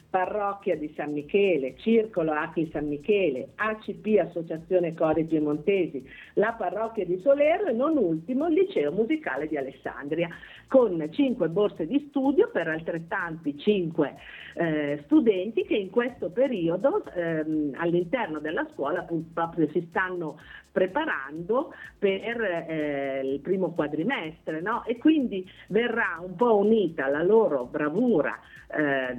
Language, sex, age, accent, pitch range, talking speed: Italian, female, 50-69, native, 155-220 Hz, 125 wpm